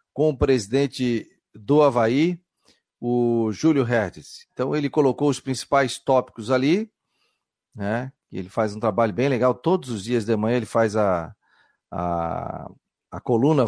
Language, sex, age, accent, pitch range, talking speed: Portuguese, male, 40-59, Brazilian, 125-150 Hz, 145 wpm